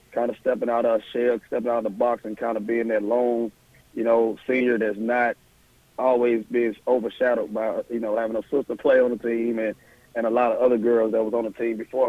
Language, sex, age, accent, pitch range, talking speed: English, male, 30-49, American, 110-125 Hz, 240 wpm